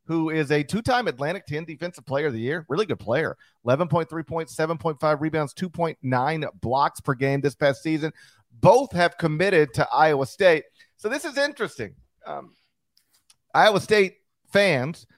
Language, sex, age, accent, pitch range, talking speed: English, male, 40-59, American, 140-185 Hz, 155 wpm